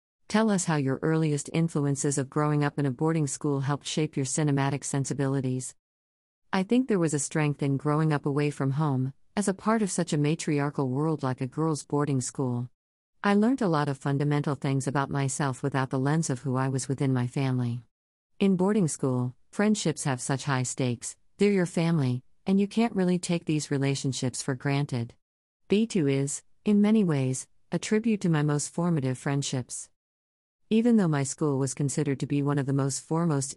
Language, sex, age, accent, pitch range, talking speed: English, female, 50-69, American, 130-160 Hz, 190 wpm